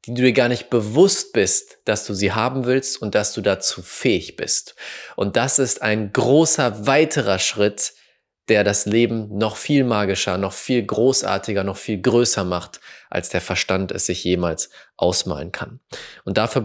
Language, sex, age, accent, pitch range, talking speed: German, male, 20-39, German, 100-125 Hz, 175 wpm